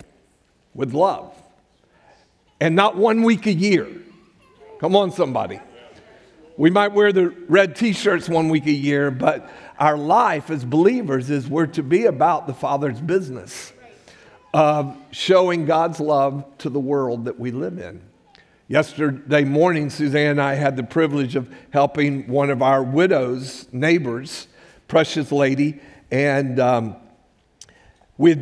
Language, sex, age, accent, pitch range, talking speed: English, male, 50-69, American, 135-170 Hz, 135 wpm